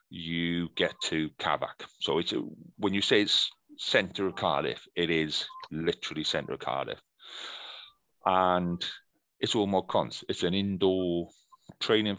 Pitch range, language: 80-100 Hz, English